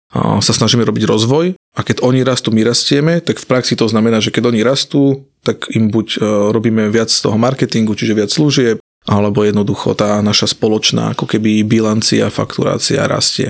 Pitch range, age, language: 110-125 Hz, 30-49, Slovak